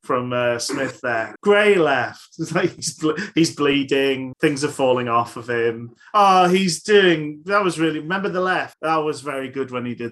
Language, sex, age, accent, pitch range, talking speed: English, male, 30-49, British, 125-165 Hz, 195 wpm